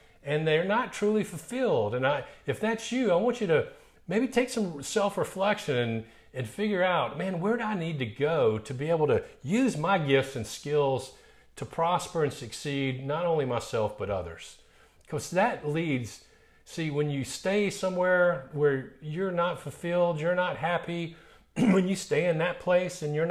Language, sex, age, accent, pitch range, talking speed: English, male, 40-59, American, 120-180 Hz, 180 wpm